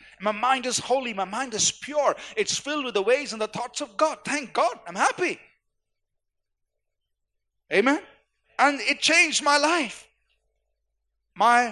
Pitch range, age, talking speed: 205-280 Hz, 50-69, 150 wpm